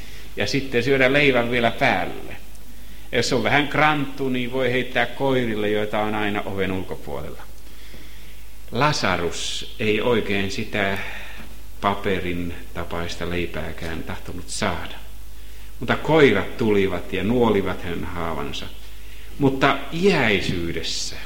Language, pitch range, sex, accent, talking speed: Finnish, 90-120 Hz, male, native, 105 wpm